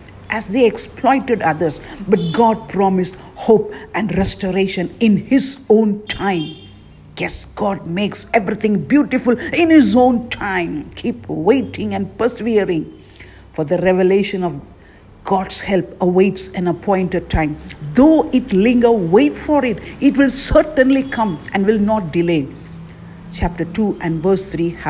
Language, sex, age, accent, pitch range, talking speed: English, female, 50-69, Indian, 175-245 Hz, 130 wpm